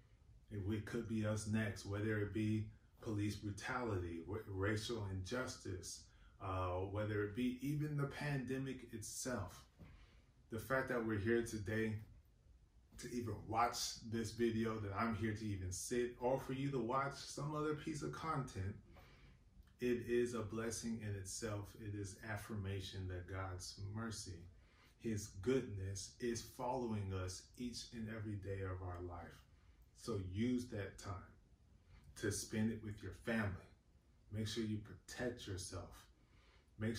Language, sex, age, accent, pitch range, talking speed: English, male, 30-49, American, 100-125 Hz, 140 wpm